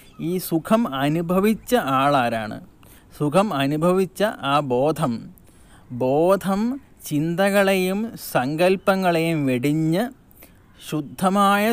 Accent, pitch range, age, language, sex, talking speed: native, 135-190 Hz, 30-49, Malayalam, male, 65 wpm